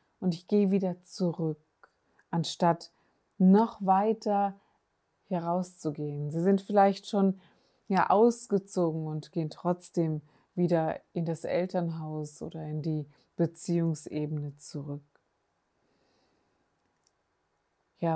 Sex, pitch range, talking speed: female, 155-180 Hz, 95 wpm